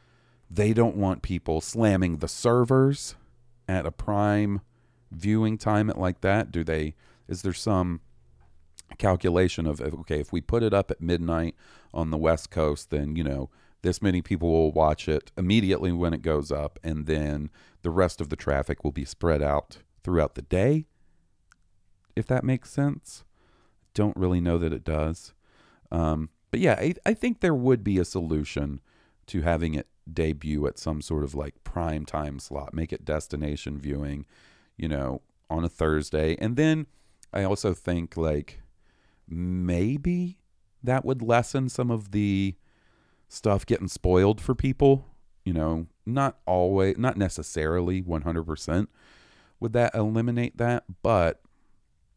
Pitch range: 80-110 Hz